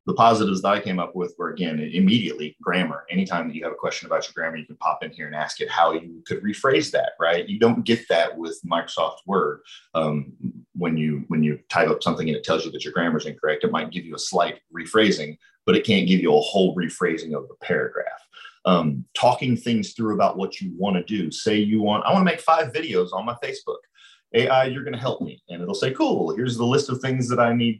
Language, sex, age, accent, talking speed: English, male, 30-49, American, 250 wpm